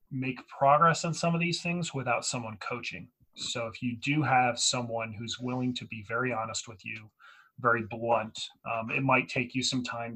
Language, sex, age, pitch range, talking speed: English, male, 30-49, 120-150 Hz, 195 wpm